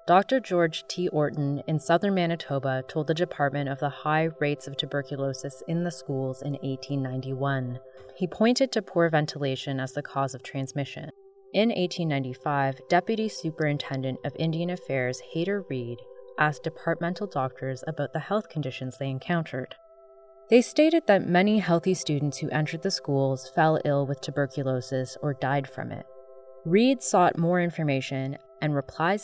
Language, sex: English, female